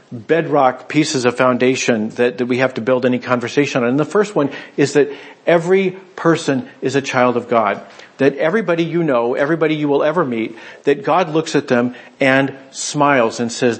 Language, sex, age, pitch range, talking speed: English, male, 50-69, 125-150 Hz, 190 wpm